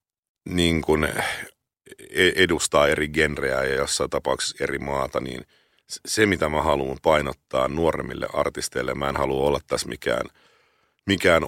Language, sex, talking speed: Finnish, male, 125 wpm